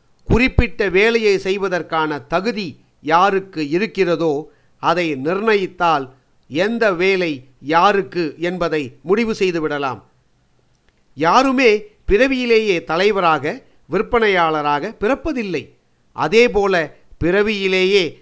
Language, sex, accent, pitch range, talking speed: Tamil, male, native, 165-225 Hz, 70 wpm